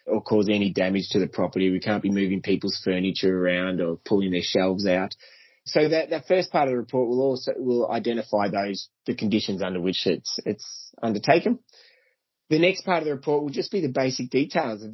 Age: 20-39